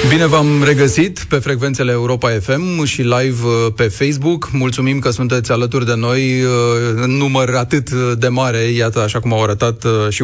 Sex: male